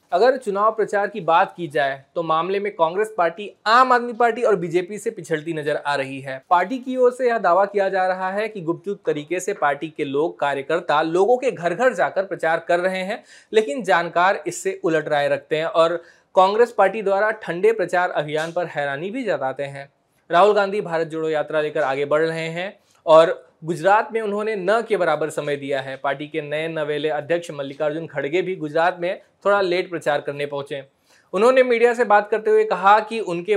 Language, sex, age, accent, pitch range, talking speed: Hindi, male, 20-39, native, 155-195 Hz, 200 wpm